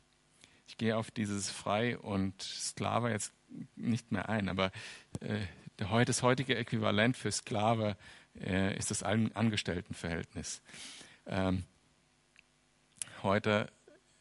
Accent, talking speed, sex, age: German, 105 wpm, male, 50-69